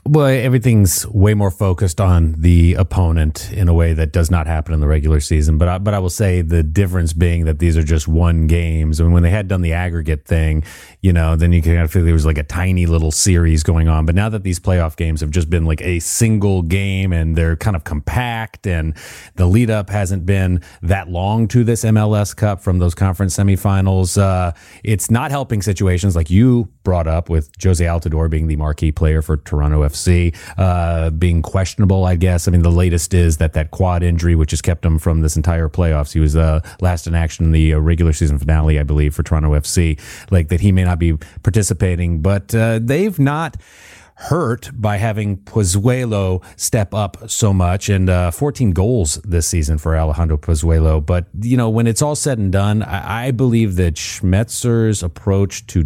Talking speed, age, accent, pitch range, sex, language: 205 wpm, 30-49, American, 80-100 Hz, male, English